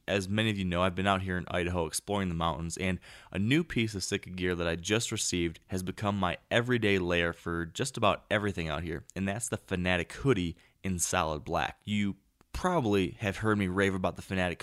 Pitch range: 85-105 Hz